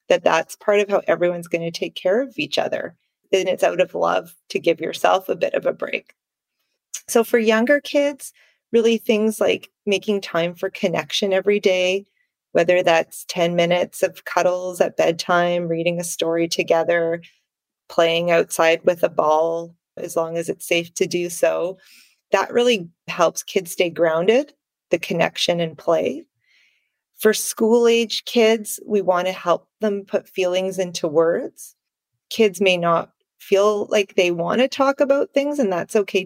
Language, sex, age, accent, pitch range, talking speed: English, female, 30-49, American, 170-210 Hz, 165 wpm